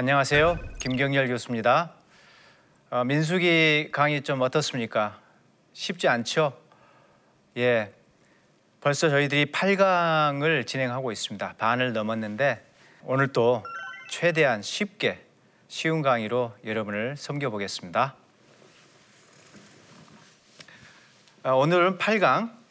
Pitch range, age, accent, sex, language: 125-175 Hz, 40-59, native, male, Korean